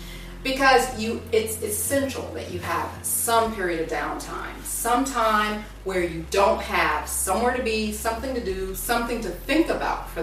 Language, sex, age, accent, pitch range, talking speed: English, female, 40-59, American, 170-260 Hz, 160 wpm